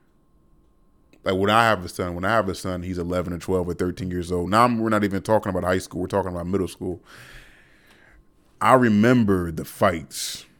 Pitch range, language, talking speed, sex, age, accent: 90-105 Hz, English, 210 wpm, male, 20-39, American